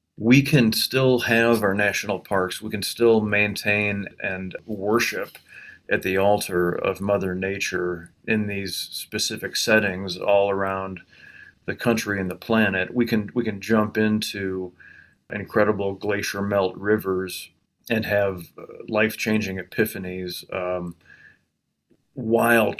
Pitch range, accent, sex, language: 95-115 Hz, American, male, English